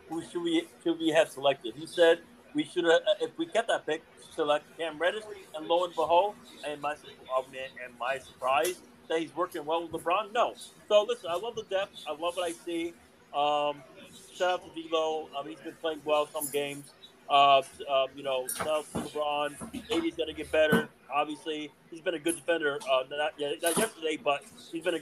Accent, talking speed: American, 215 wpm